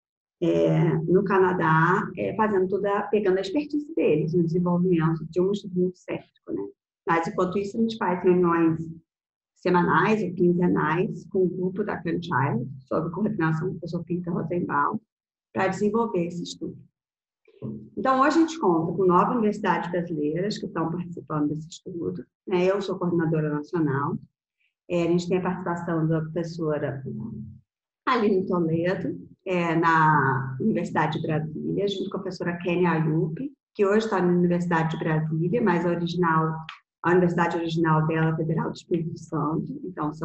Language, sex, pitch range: Portuguese, female, 160-185 Hz